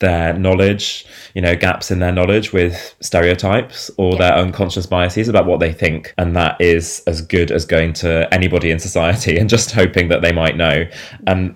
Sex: male